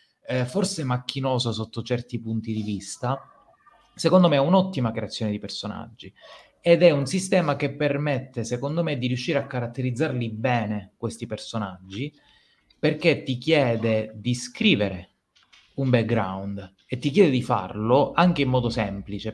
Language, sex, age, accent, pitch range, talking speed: Italian, male, 30-49, native, 110-155 Hz, 140 wpm